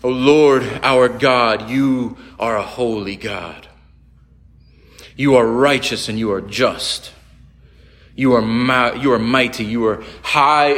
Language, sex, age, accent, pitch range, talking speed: English, male, 30-49, American, 85-130 Hz, 140 wpm